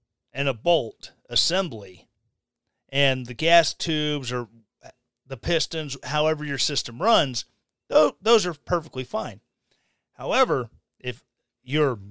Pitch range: 130-180 Hz